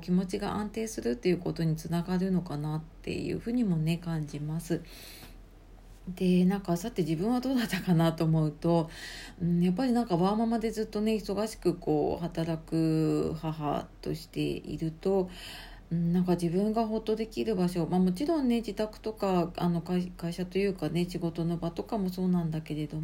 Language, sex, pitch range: Japanese, female, 160-215 Hz